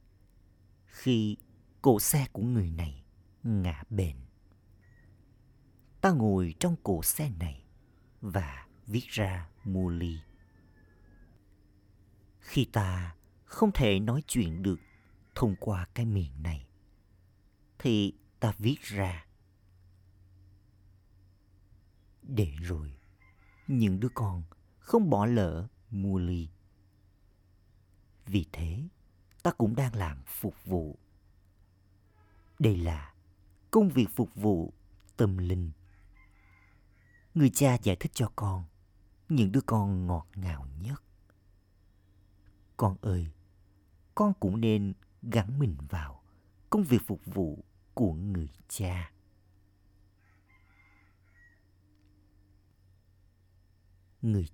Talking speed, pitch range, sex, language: 95 wpm, 90-105 Hz, male, Vietnamese